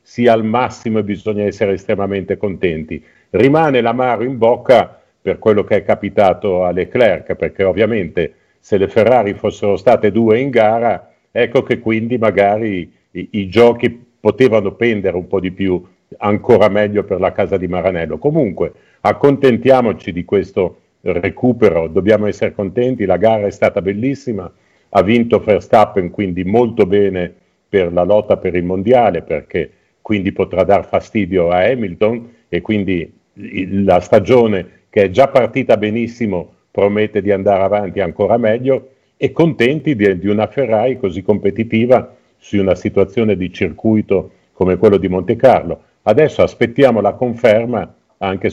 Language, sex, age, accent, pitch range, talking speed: Italian, male, 50-69, native, 95-120 Hz, 145 wpm